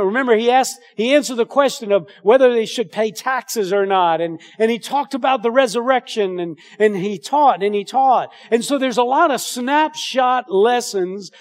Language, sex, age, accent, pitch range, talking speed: English, male, 50-69, American, 210-265 Hz, 195 wpm